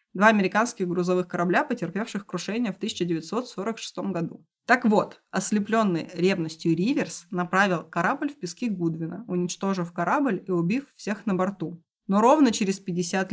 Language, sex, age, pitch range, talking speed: Russian, female, 20-39, 170-215 Hz, 135 wpm